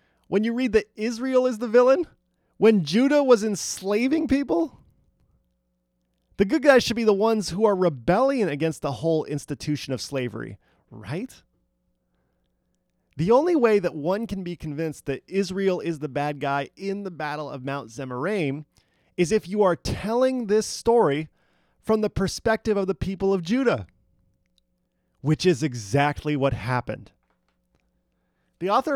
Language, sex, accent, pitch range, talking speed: English, male, American, 125-210 Hz, 150 wpm